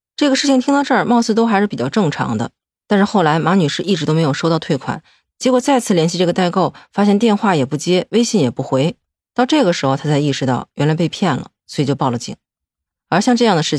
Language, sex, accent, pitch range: Chinese, female, native, 145-235 Hz